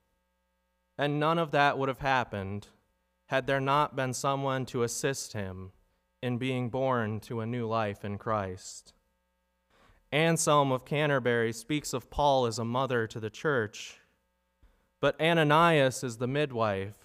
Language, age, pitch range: English, 20-39, 105-150 Hz